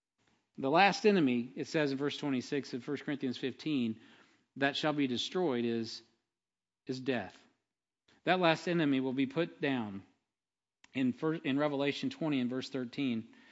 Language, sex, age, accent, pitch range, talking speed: English, male, 40-59, American, 130-160 Hz, 150 wpm